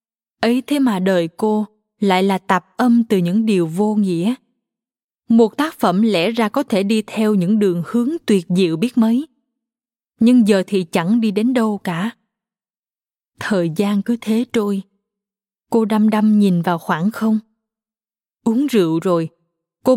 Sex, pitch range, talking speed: female, 185-230 Hz, 160 wpm